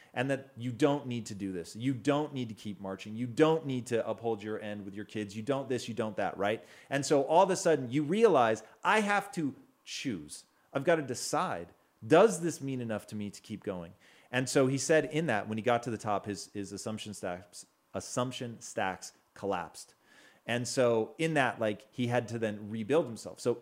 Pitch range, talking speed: 105-140 Hz, 220 wpm